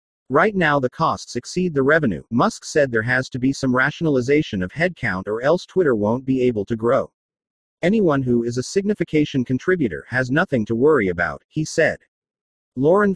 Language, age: English, 40-59